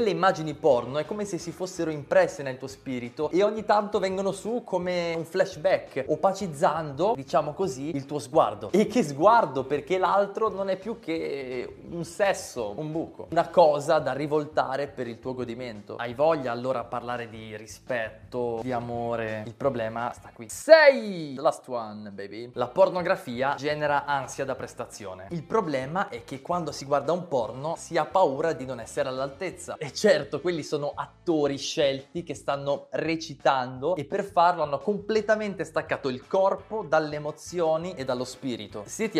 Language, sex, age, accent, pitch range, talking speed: Italian, male, 20-39, native, 130-180 Hz, 165 wpm